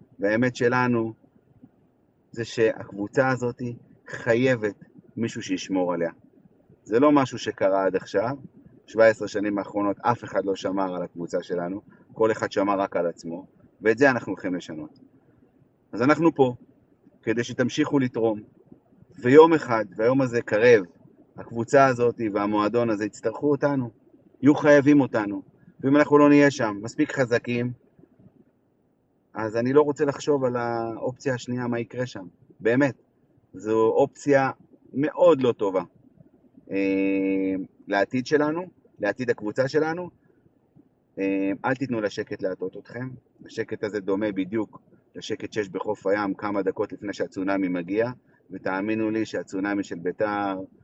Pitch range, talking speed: 100-135 Hz, 130 wpm